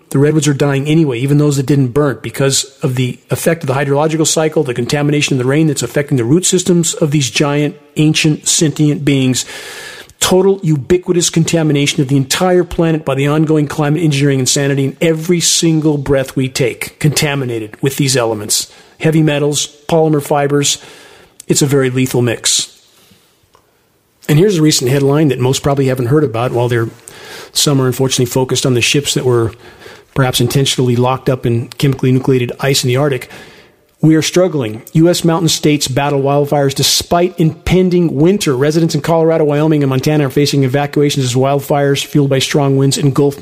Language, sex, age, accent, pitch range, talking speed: English, male, 40-59, American, 135-165 Hz, 175 wpm